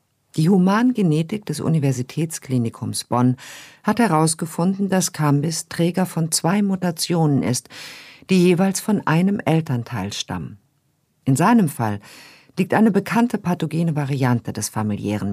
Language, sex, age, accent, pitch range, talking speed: German, female, 50-69, German, 135-190 Hz, 115 wpm